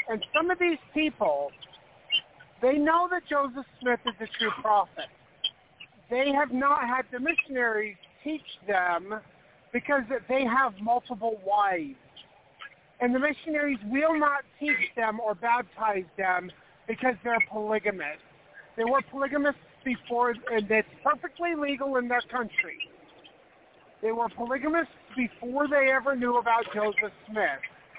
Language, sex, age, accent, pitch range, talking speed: English, male, 50-69, American, 205-265 Hz, 130 wpm